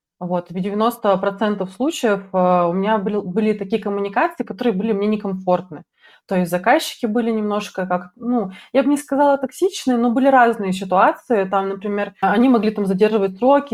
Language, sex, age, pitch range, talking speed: Russian, female, 20-39, 195-235 Hz, 160 wpm